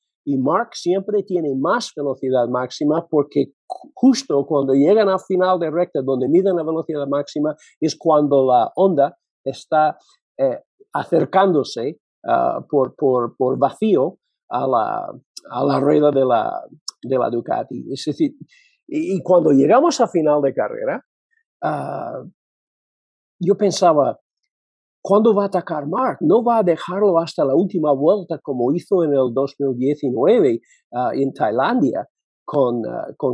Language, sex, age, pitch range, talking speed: Spanish, male, 50-69, 145-205 Hz, 140 wpm